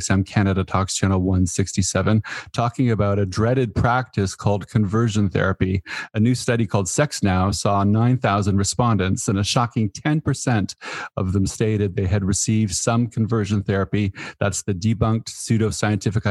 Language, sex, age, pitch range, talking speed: English, male, 40-59, 100-115 Hz, 140 wpm